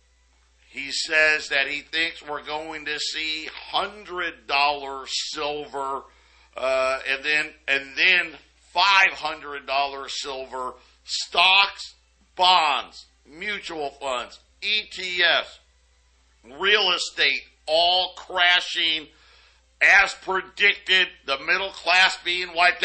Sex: male